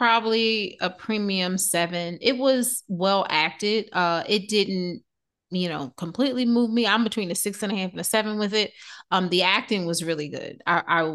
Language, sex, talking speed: English, female, 195 wpm